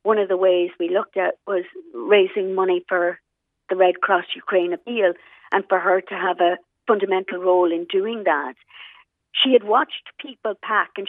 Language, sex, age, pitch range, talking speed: English, female, 50-69, 180-235 Hz, 180 wpm